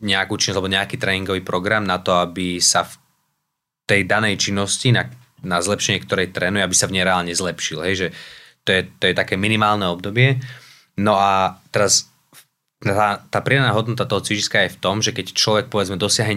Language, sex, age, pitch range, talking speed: Slovak, male, 20-39, 90-105 Hz, 175 wpm